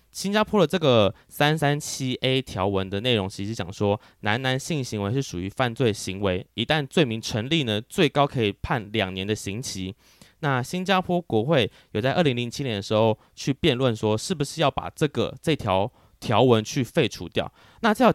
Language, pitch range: Chinese, 105-145 Hz